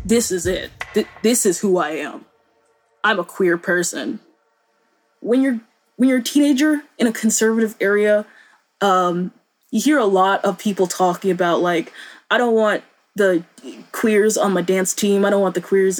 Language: English